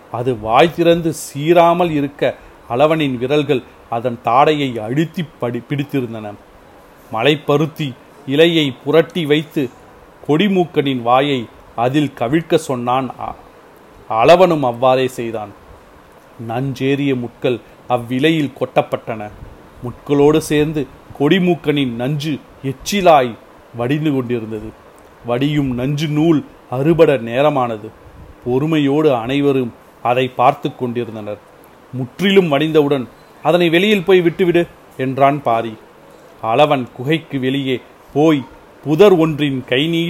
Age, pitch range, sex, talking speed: 40-59, 125-155 Hz, male, 90 wpm